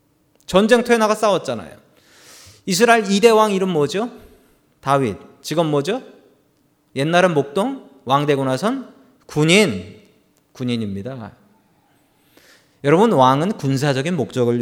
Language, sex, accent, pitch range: Korean, male, native, 125-205 Hz